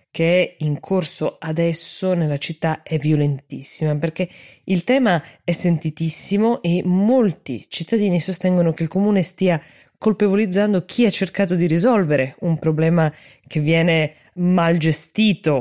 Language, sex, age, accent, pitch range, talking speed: Italian, female, 20-39, native, 150-185 Hz, 130 wpm